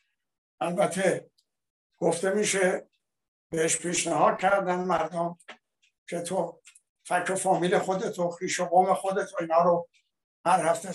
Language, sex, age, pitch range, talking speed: Persian, male, 60-79, 155-185 Hz, 120 wpm